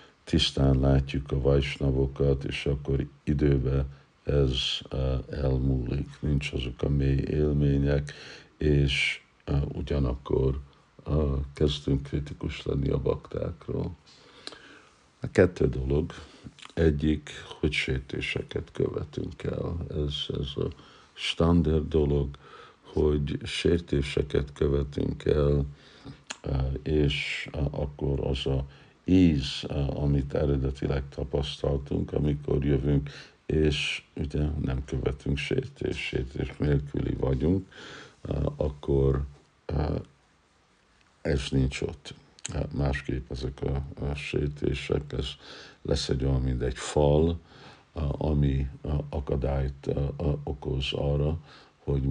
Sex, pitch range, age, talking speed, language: male, 70-75 Hz, 60-79, 90 wpm, Hungarian